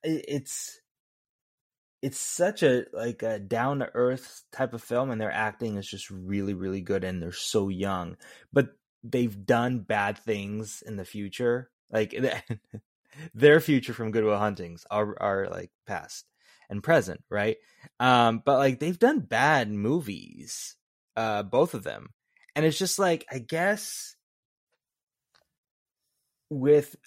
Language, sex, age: English, male, 20-39